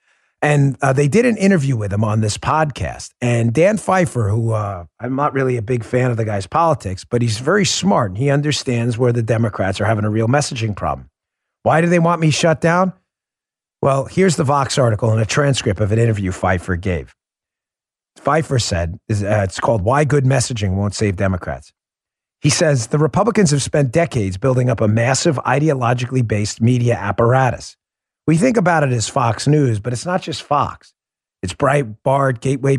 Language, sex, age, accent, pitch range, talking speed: English, male, 40-59, American, 105-140 Hz, 185 wpm